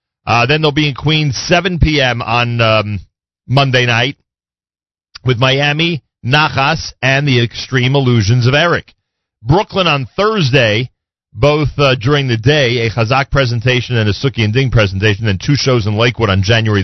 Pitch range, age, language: 105-140 Hz, 40-59, English